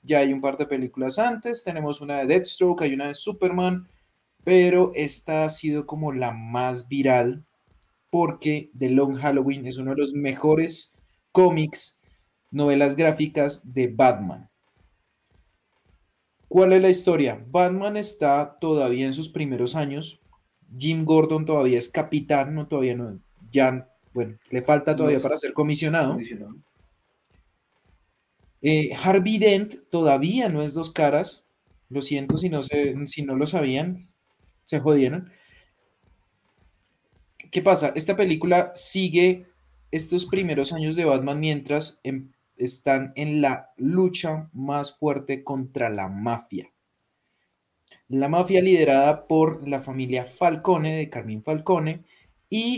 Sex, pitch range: male, 130-165 Hz